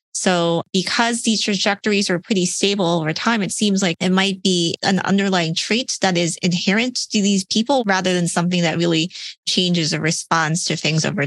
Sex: female